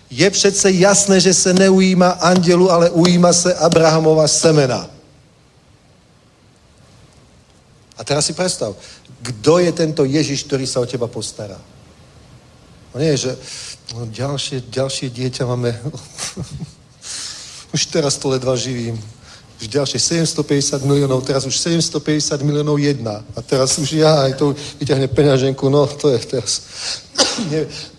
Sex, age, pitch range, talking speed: male, 40-59, 125-150 Hz, 130 wpm